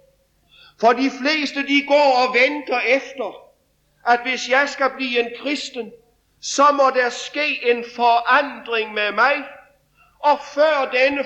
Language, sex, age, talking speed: English, male, 50-69, 140 wpm